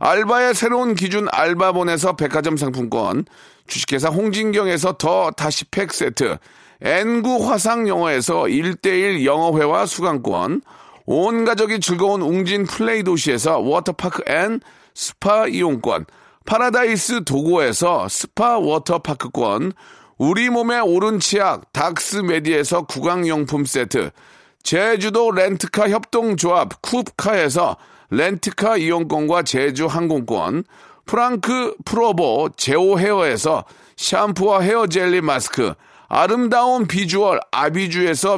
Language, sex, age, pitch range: Korean, male, 40-59, 165-225 Hz